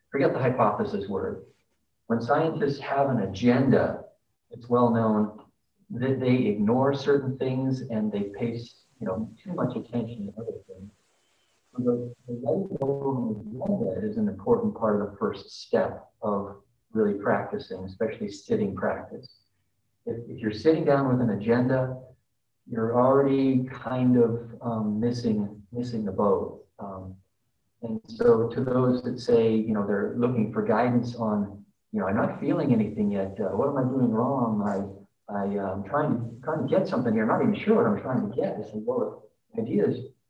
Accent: American